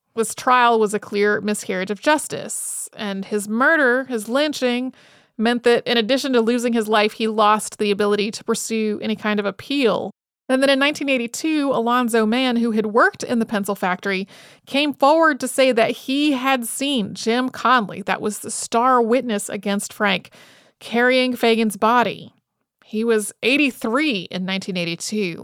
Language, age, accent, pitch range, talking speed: English, 30-49, American, 205-250 Hz, 165 wpm